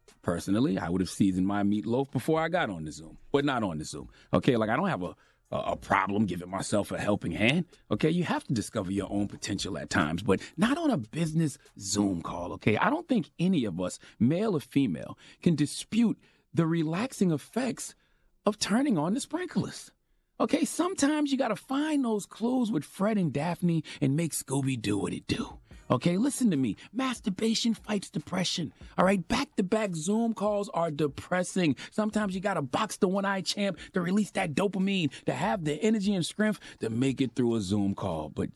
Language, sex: English, male